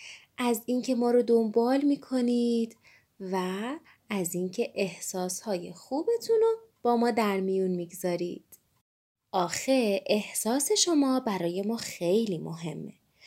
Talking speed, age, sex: 110 wpm, 20-39, female